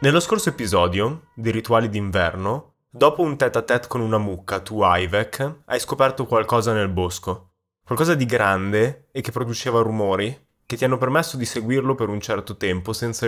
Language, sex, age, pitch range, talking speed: Italian, male, 20-39, 100-125 Hz, 170 wpm